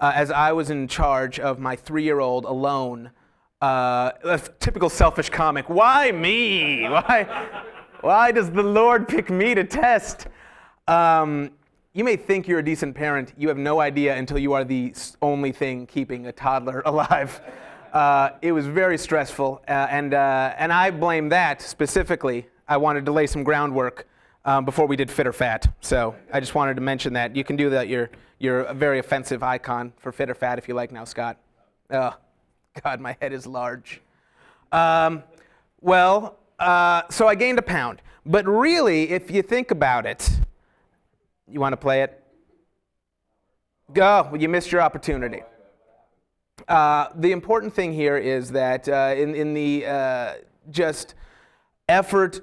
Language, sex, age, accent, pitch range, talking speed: English, male, 30-49, American, 130-165 Hz, 170 wpm